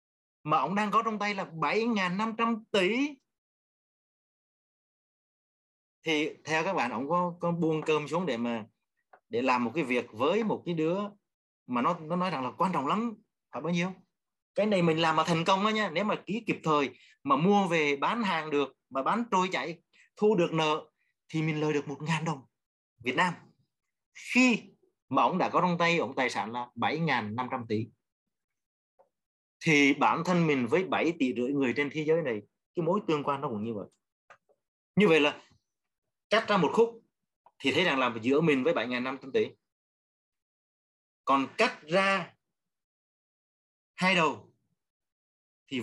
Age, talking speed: 30-49, 175 wpm